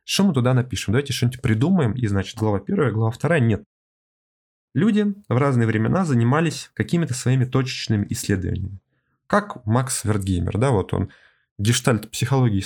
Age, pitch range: 20-39, 105-140 Hz